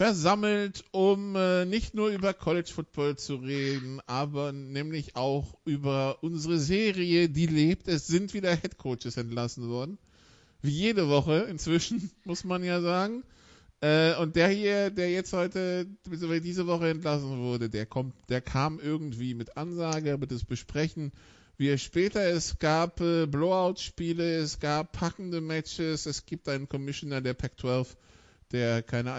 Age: 50-69